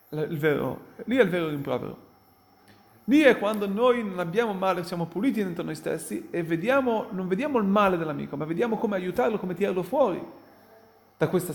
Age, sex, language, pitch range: 40-59, male, Italian, 170-245 Hz